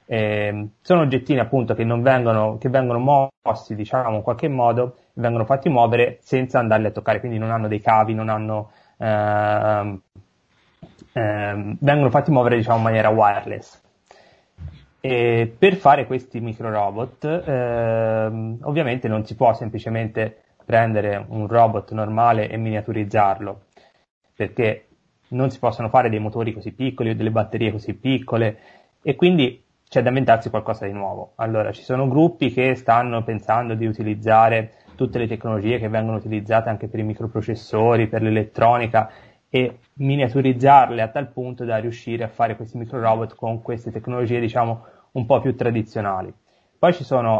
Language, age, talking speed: Italian, 20-39, 155 wpm